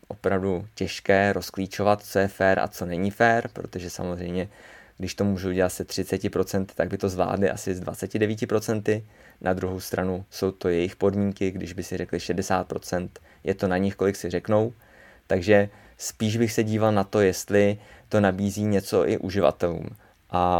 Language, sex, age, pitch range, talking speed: Czech, male, 20-39, 95-105 Hz, 170 wpm